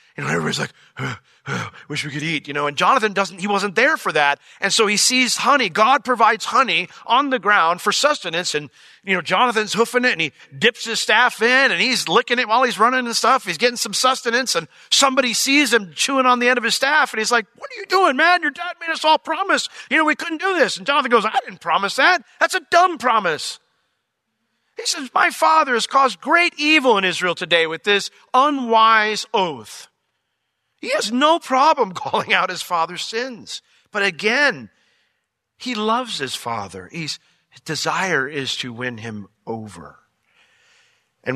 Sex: male